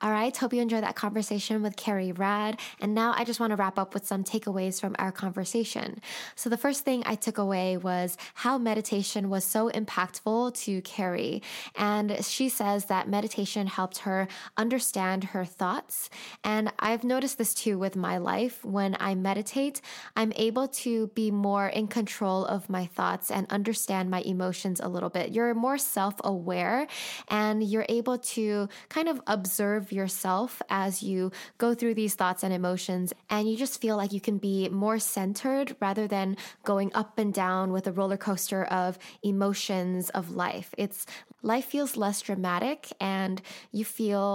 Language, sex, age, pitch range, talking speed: English, female, 10-29, 190-225 Hz, 175 wpm